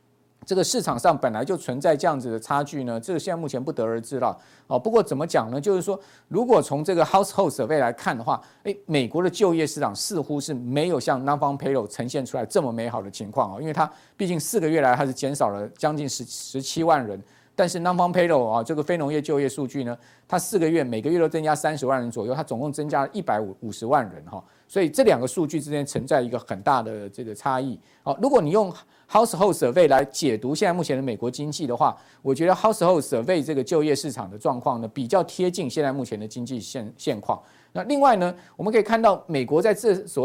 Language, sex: Chinese, male